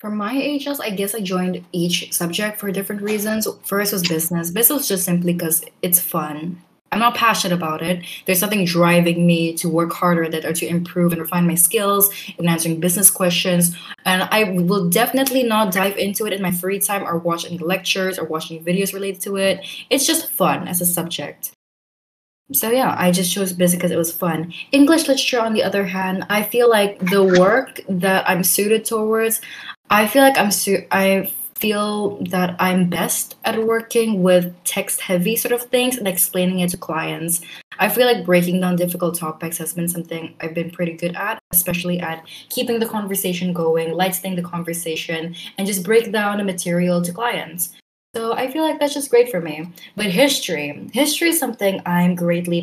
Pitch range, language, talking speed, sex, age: 175-215 Hz, English, 195 wpm, female, 20-39